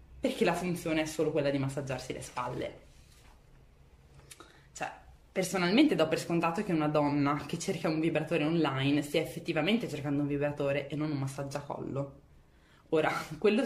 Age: 20-39